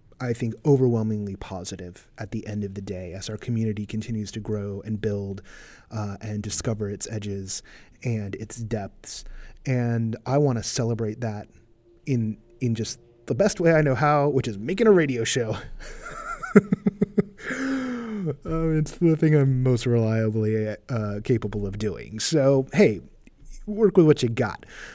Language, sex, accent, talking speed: English, male, American, 155 wpm